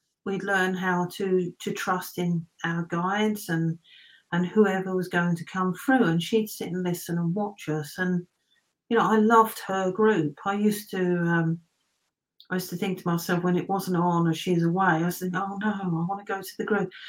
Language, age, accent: English, 50-69, British